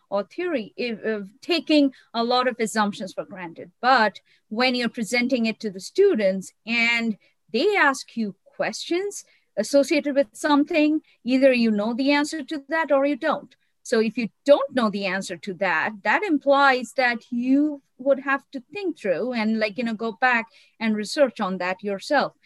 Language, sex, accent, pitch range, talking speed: English, female, Indian, 205-275 Hz, 175 wpm